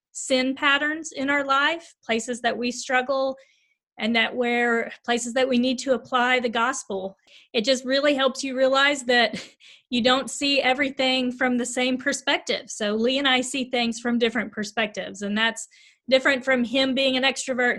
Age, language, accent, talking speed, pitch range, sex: 30-49, English, American, 175 wpm, 235-275 Hz, female